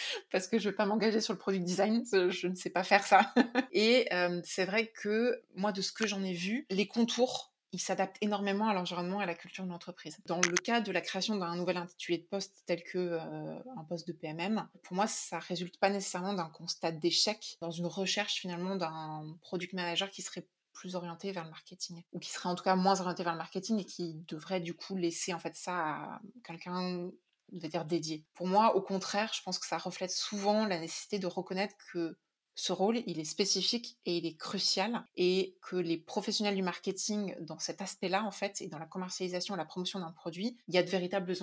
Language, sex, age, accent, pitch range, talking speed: French, female, 20-39, French, 175-205 Hz, 225 wpm